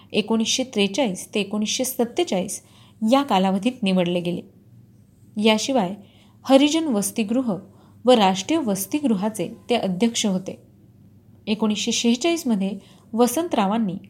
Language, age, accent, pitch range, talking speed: Marathi, 30-49, native, 190-250 Hz, 90 wpm